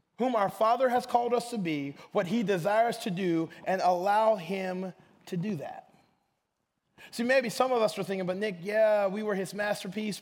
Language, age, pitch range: English, 30-49, 190-275 Hz